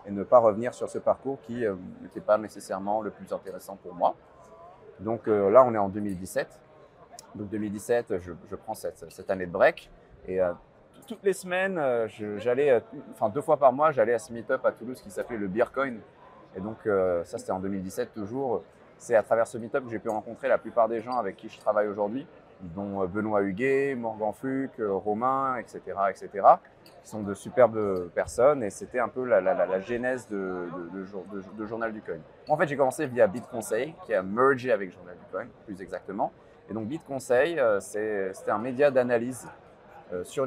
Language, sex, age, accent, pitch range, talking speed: French, male, 30-49, French, 100-135 Hz, 205 wpm